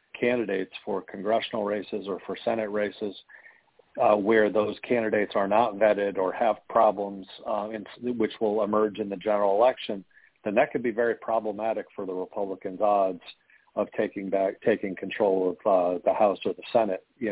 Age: 40-59